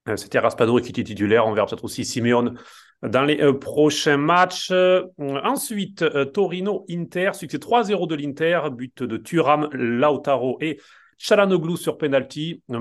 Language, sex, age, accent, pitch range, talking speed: French, male, 30-49, French, 125-155 Hz, 140 wpm